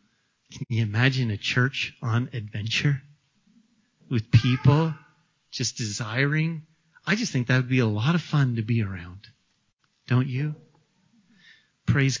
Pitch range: 140-200 Hz